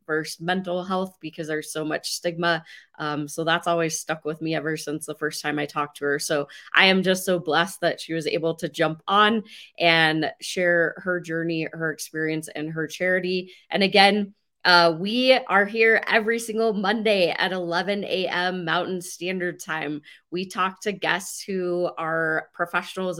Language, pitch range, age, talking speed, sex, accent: English, 170-205 Hz, 20-39, 175 wpm, female, American